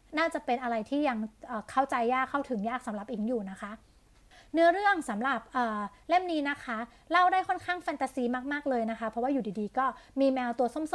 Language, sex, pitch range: Thai, female, 230-295 Hz